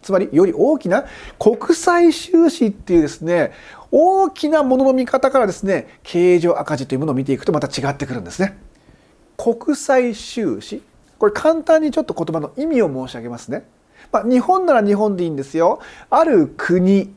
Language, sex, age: Japanese, male, 40-59